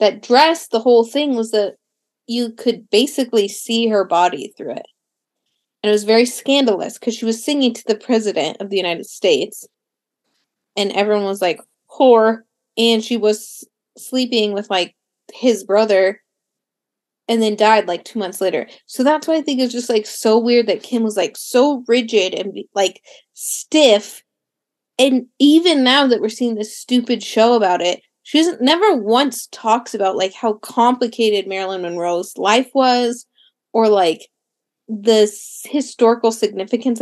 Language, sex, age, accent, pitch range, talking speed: English, female, 20-39, American, 210-265 Hz, 160 wpm